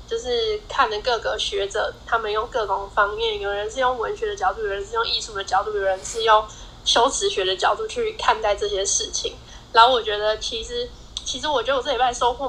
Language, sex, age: Chinese, female, 10-29